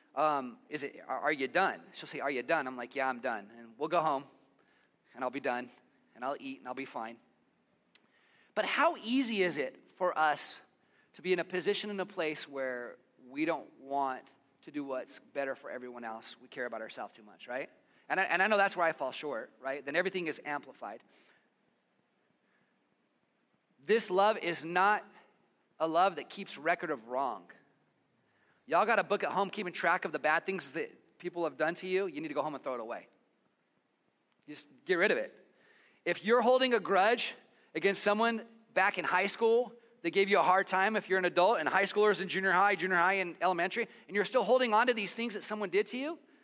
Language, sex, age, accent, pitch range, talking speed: English, male, 30-49, American, 150-215 Hz, 215 wpm